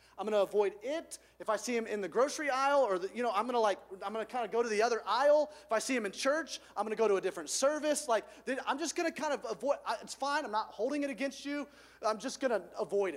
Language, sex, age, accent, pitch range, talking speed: English, male, 30-49, American, 190-265 Hz, 295 wpm